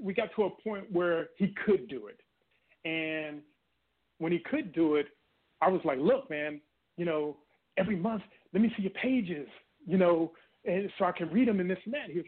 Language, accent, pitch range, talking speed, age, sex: English, American, 175-240 Hz, 210 wpm, 30-49, male